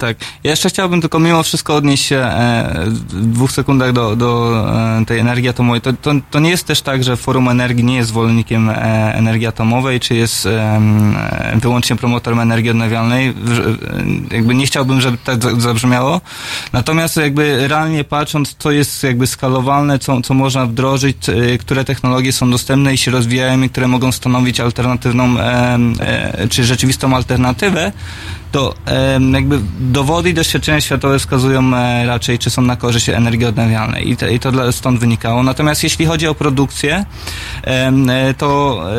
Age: 20-39